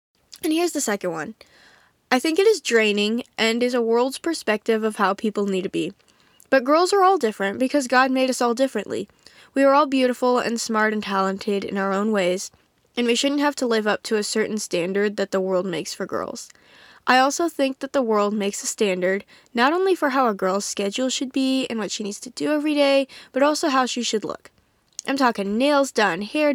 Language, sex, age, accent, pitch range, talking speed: English, female, 10-29, American, 210-280 Hz, 220 wpm